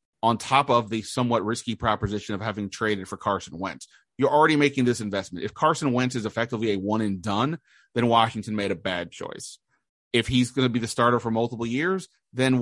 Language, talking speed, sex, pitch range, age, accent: English, 200 wpm, male, 105-125 Hz, 30-49, American